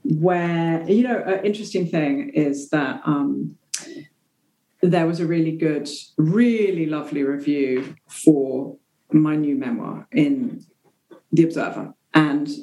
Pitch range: 150-180 Hz